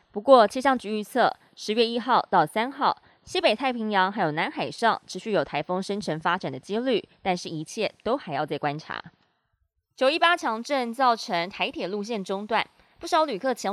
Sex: female